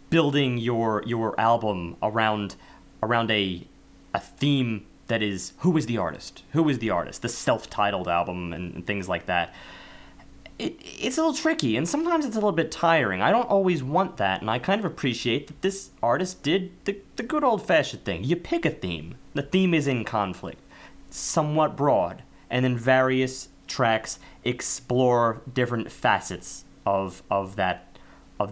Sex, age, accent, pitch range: male, 20-39, American, 100-140 Hz